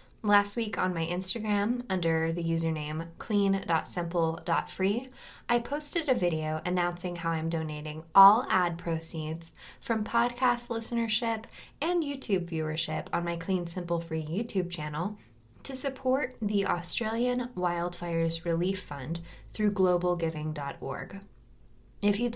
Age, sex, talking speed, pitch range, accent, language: 10-29, female, 120 wpm, 165-225 Hz, American, English